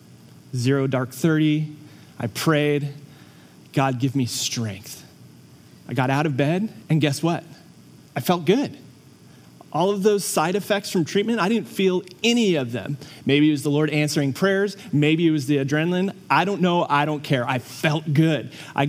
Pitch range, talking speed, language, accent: 140-165 Hz, 175 wpm, English, American